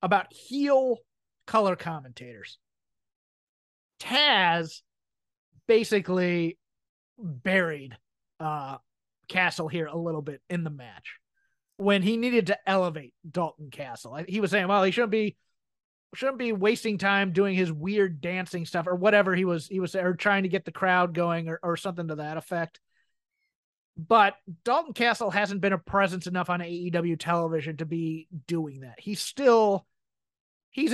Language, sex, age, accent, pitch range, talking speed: English, male, 30-49, American, 165-215 Hz, 145 wpm